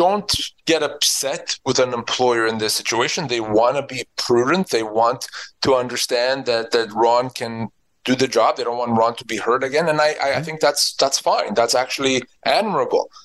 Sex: male